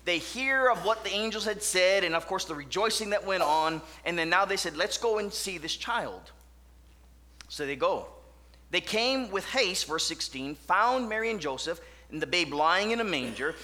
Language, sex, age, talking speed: English, male, 30-49, 205 wpm